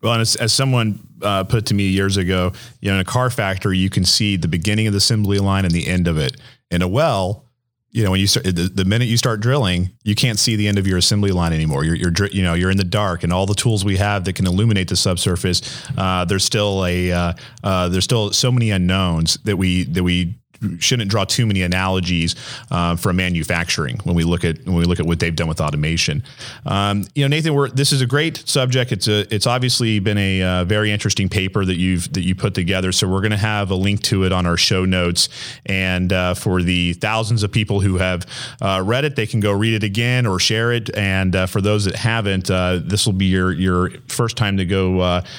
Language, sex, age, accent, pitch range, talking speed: English, male, 30-49, American, 90-115 Hz, 245 wpm